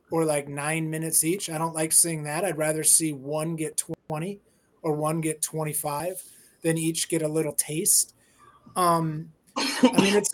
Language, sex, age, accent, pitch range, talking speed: English, male, 30-49, American, 160-185 Hz, 175 wpm